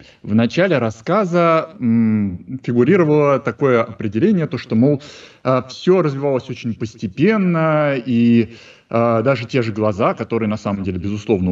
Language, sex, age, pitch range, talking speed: Russian, male, 20-39, 110-160 Hz, 115 wpm